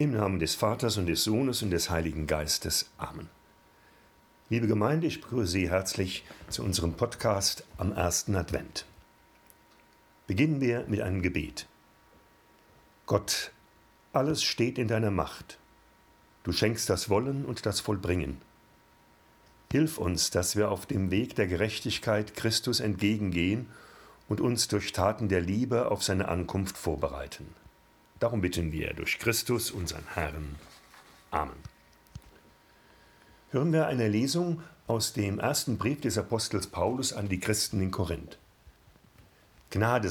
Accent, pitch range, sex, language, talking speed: German, 90-115 Hz, male, German, 130 wpm